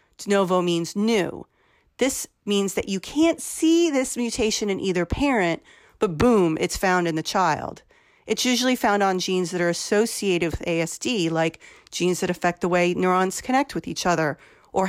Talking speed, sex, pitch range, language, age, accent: 175 wpm, female, 175-240 Hz, English, 40-59, American